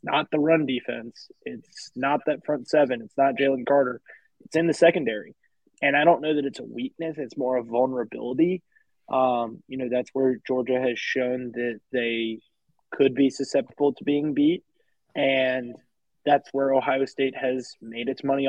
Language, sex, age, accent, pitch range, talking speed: English, male, 20-39, American, 125-140 Hz, 175 wpm